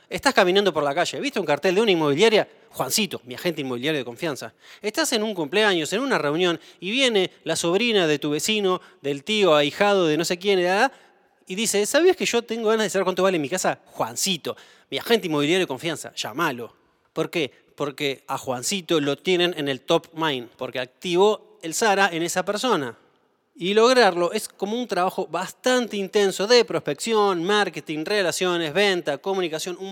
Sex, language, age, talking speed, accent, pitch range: male, Spanish, 20-39, 185 wpm, Argentinian, 155-205 Hz